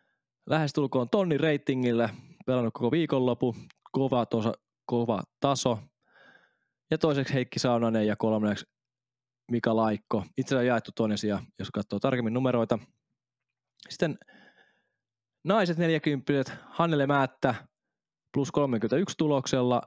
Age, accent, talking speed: 20-39, native, 105 wpm